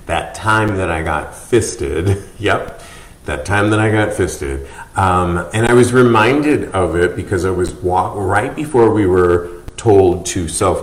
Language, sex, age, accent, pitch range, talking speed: English, male, 40-59, American, 85-110 Hz, 170 wpm